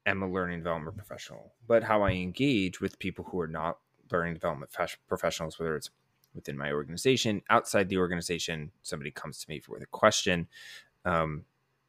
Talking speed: 170 wpm